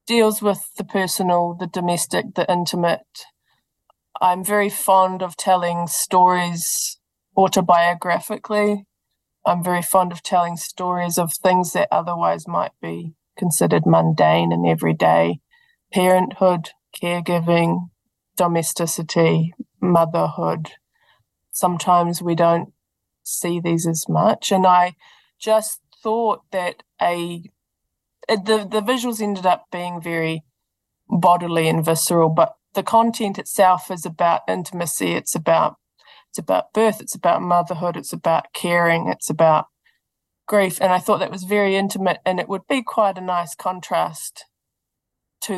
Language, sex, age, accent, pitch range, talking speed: English, female, 20-39, Australian, 170-200 Hz, 125 wpm